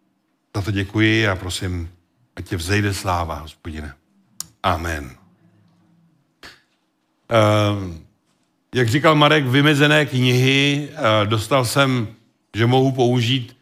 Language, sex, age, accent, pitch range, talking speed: Czech, male, 60-79, native, 110-145 Hz, 100 wpm